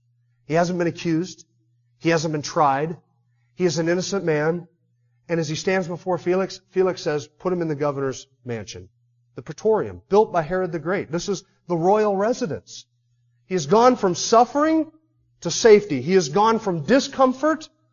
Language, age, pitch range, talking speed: English, 40-59, 175-235 Hz, 170 wpm